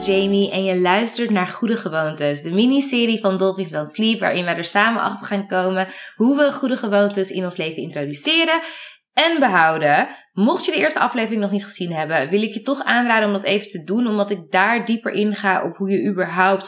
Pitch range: 180-230 Hz